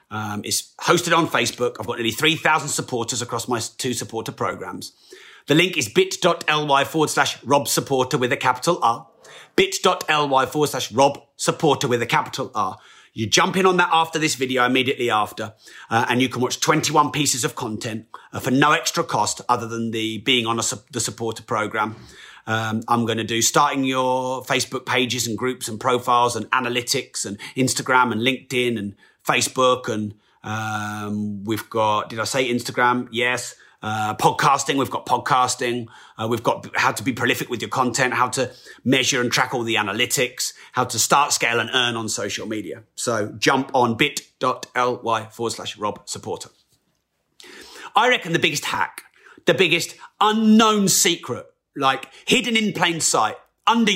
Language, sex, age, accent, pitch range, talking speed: English, male, 30-49, British, 115-150 Hz, 170 wpm